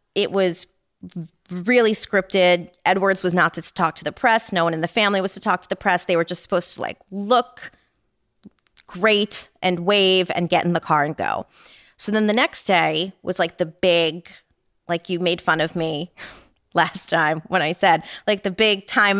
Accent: American